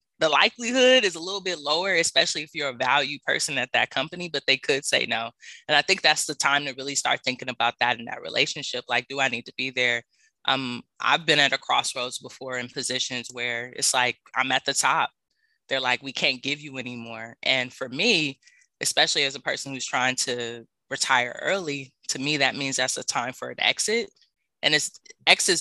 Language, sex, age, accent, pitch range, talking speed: English, female, 20-39, American, 125-150 Hz, 215 wpm